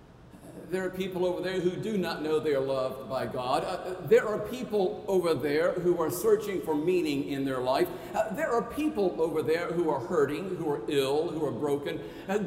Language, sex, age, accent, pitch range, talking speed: English, male, 50-69, American, 140-190 Hz, 210 wpm